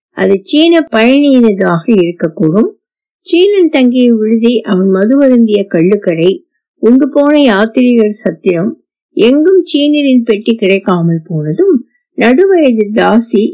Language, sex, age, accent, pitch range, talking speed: Tamil, female, 50-69, native, 205-300 Hz, 75 wpm